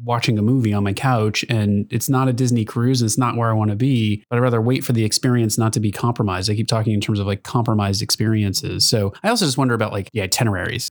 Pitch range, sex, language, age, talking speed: 110-140 Hz, male, English, 30-49, 280 wpm